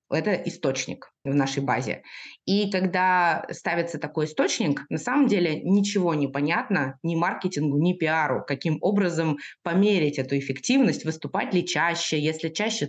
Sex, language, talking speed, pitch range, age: female, Russian, 140 wpm, 145-190 Hz, 20-39